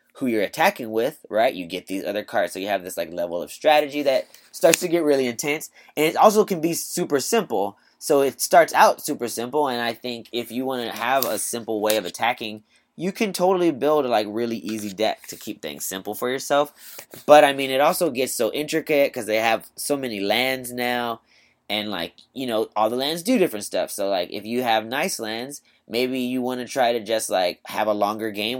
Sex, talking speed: male, 230 wpm